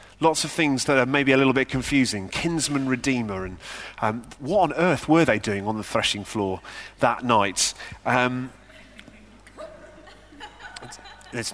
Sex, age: male, 30-49